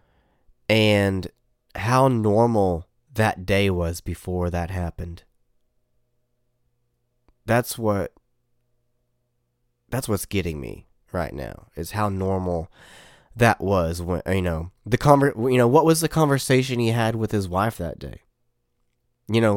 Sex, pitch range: male, 90-120 Hz